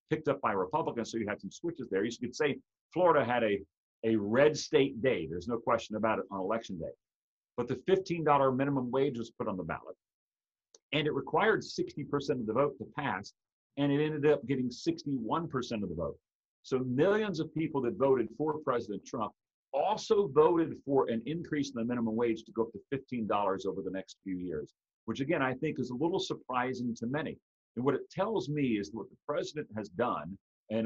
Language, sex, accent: English, male, American